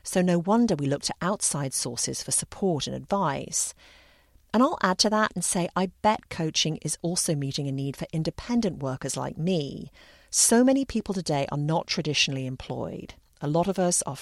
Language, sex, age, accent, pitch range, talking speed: English, female, 40-59, British, 145-195 Hz, 190 wpm